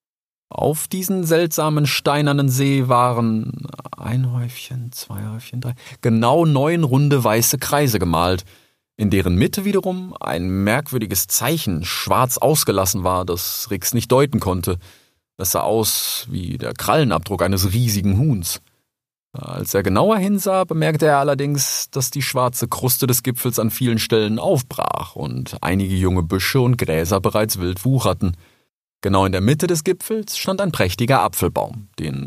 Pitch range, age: 95-145 Hz, 30-49